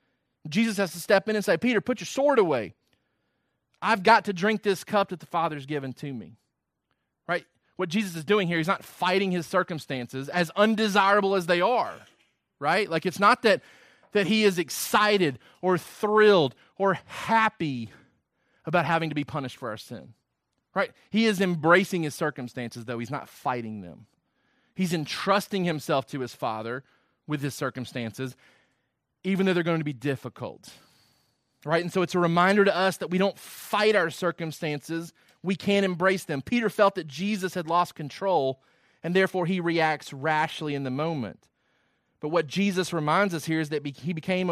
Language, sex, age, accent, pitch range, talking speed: English, male, 30-49, American, 135-190 Hz, 175 wpm